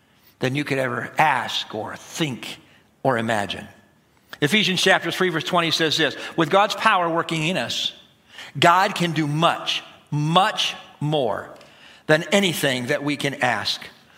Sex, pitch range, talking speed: male, 165-210 Hz, 145 wpm